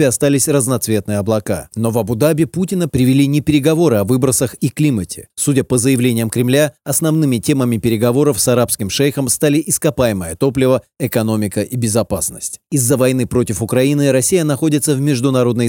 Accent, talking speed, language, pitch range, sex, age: native, 145 wpm, Russian, 115-145 Hz, male, 30-49